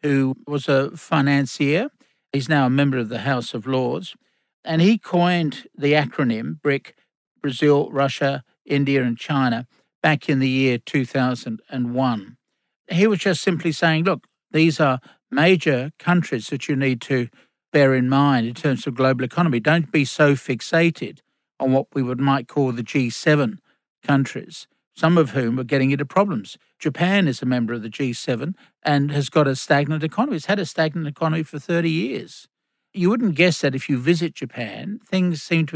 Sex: male